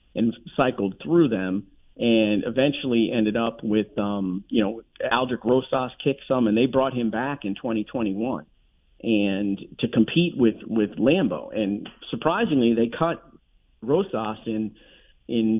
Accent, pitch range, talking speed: American, 110-145 Hz, 140 wpm